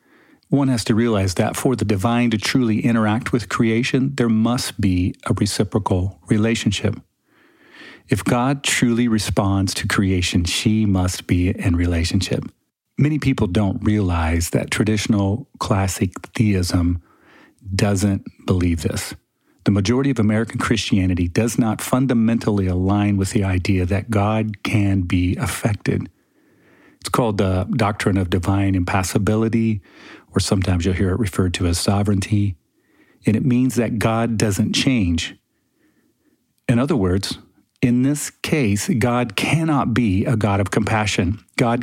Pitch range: 95-120 Hz